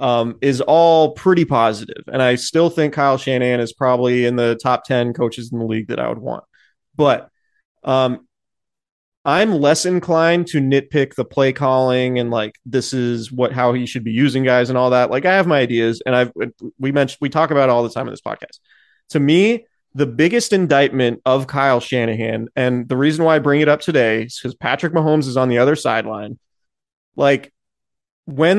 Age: 30-49